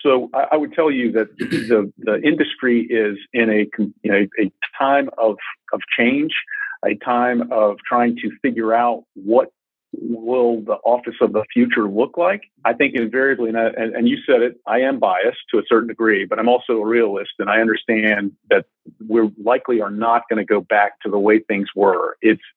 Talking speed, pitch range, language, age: 200 wpm, 110-120 Hz, English, 50-69